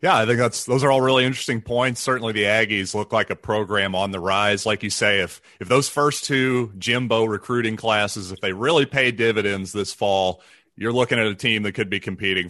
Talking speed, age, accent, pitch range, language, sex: 225 wpm, 30-49, American, 110-140 Hz, English, male